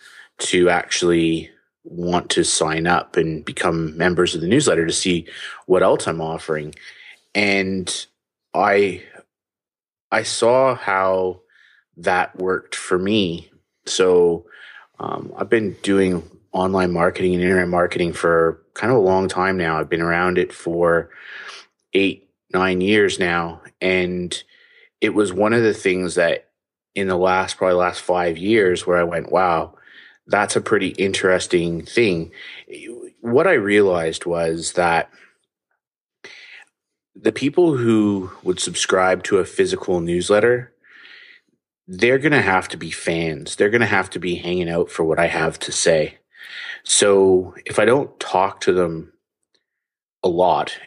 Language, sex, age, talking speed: English, male, 30-49, 145 wpm